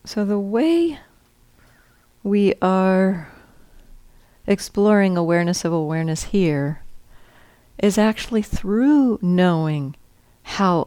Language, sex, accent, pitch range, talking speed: English, female, American, 150-180 Hz, 85 wpm